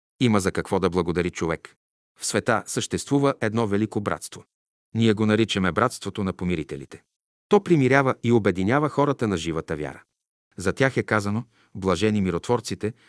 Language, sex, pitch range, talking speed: Bulgarian, male, 95-125 Hz, 145 wpm